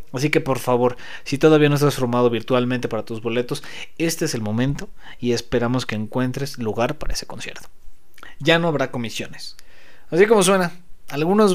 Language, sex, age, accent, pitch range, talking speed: Spanish, male, 30-49, Mexican, 120-155 Hz, 170 wpm